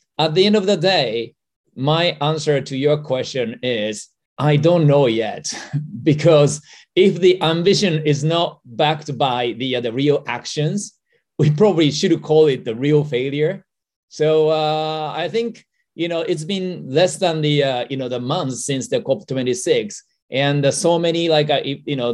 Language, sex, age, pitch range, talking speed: English, male, 30-49, 135-160 Hz, 175 wpm